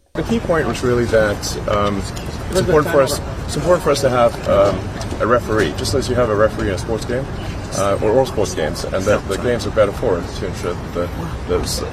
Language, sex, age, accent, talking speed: Filipino, male, 30-49, American, 235 wpm